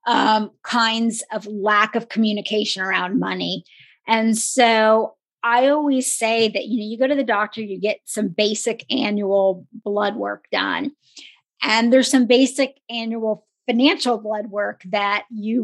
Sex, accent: female, American